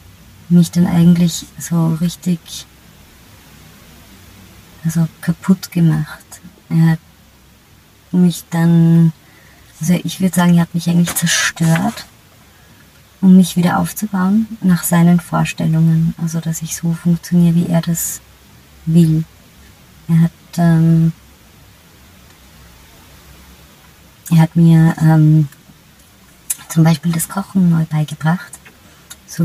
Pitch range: 155-175 Hz